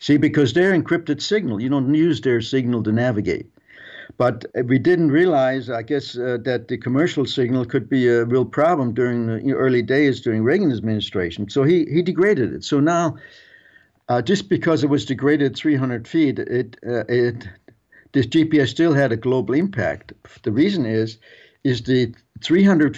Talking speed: 175 wpm